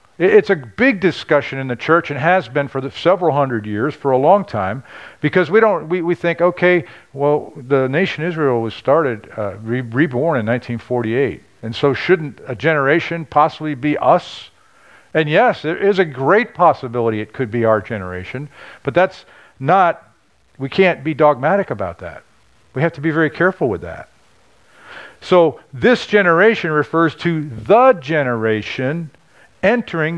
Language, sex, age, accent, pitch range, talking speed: English, male, 50-69, American, 110-160 Hz, 165 wpm